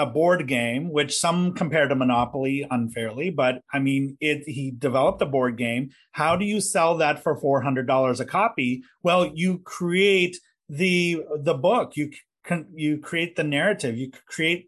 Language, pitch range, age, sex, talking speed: English, 135-175 Hz, 30-49, male, 170 wpm